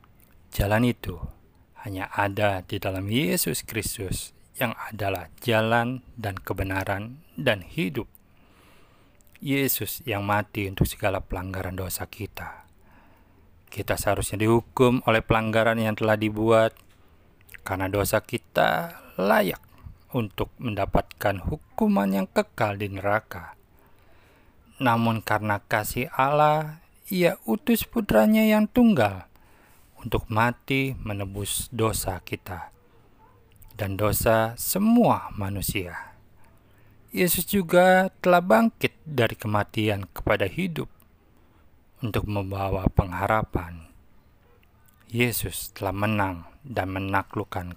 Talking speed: 95 wpm